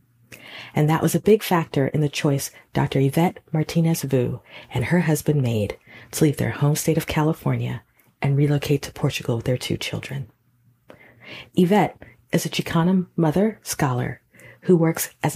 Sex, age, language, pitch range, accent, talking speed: female, 40-59, English, 130-165 Hz, American, 160 wpm